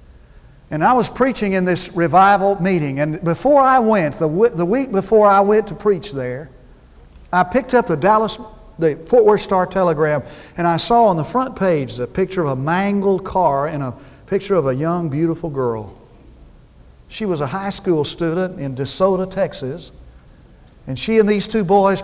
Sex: male